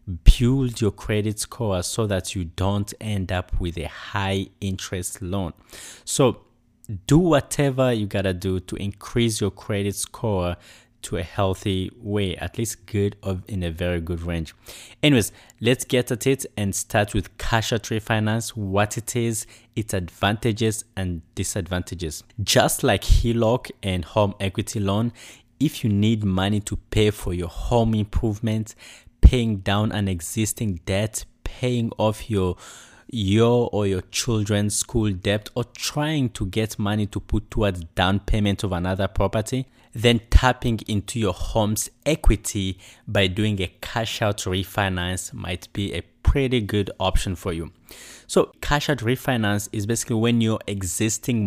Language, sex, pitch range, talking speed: English, male, 95-115 Hz, 150 wpm